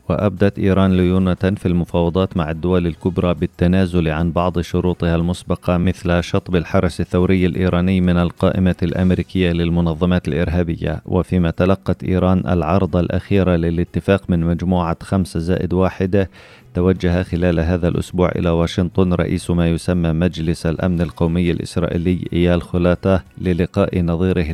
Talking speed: 125 wpm